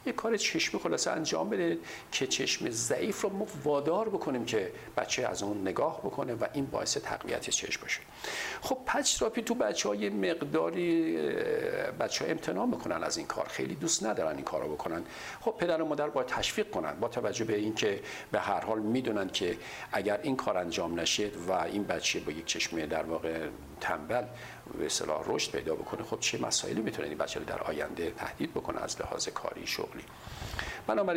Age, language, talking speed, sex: 50-69, Persian, 185 wpm, male